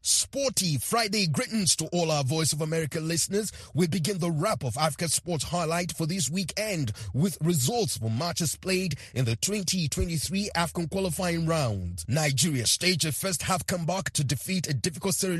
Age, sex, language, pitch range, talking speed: 30-49, male, English, 135-180 Hz, 165 wpm